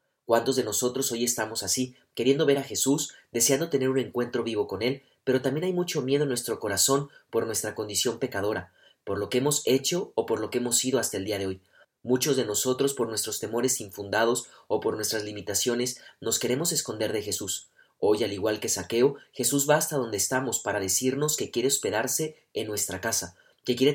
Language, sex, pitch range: Spanish, male, 115-140 Hz